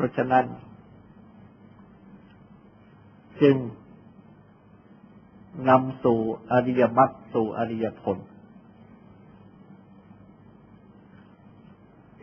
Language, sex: Thai, male